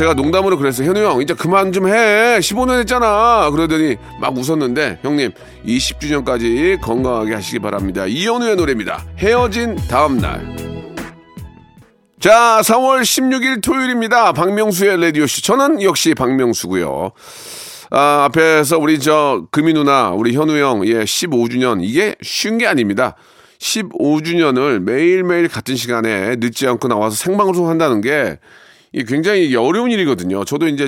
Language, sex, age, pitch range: Korean, male, 40-59, 115-190 Hz